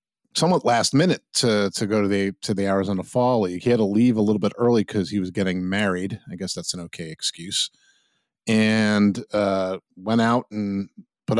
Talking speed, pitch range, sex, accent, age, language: 200 wpm, 95-115 Hz, male, American, 50-69, English